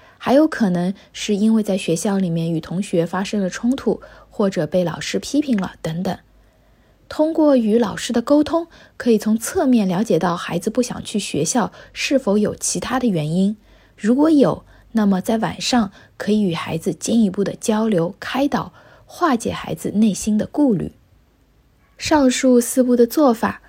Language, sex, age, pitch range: Chinese, female, 20-39, 195-255 Hz